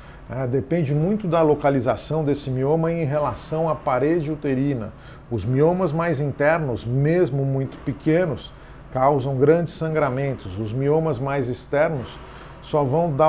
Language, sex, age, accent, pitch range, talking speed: Portuguese, male, 50-69, Brazilian, 125-155 Hz, 125 wpm